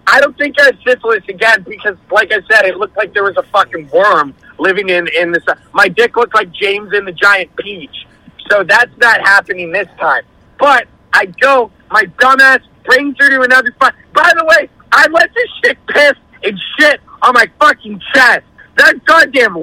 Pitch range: 200-265 Hz